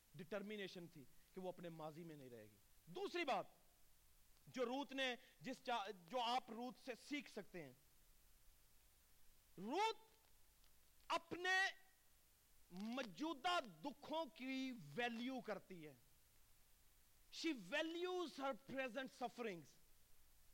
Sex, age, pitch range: male, 40-59, 175-290 Hz